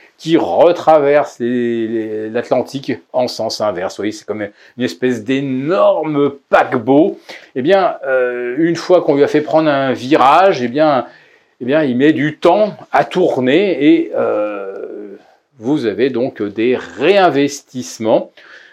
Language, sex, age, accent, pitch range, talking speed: French, male, 40-59, French, 120-175 Hz, 145 wpm